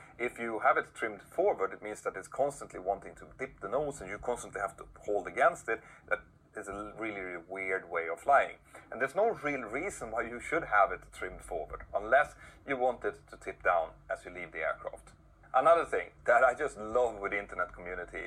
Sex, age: male, 30-49